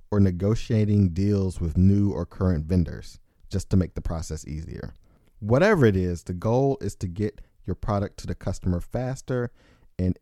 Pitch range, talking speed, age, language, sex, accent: 90-115 Hz, 170 wpm, 40-59, English, male, American